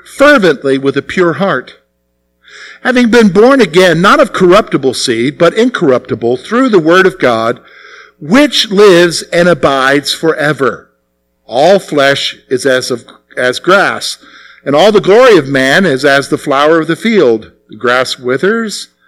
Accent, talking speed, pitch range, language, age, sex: American, 150 wpm, 130-200 Hz, English, 50-69, male